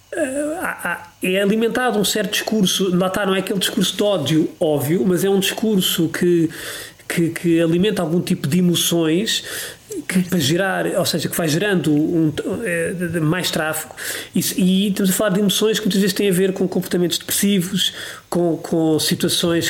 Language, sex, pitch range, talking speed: Portuguese, male, 150-185 Hz, 170 wpm